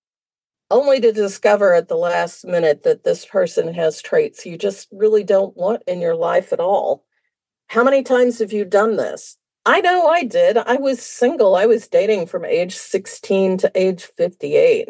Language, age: English, 50-69